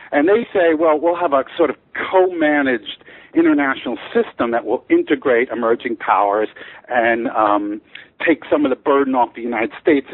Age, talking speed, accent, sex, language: 50-69, 165 wpm, American, male, English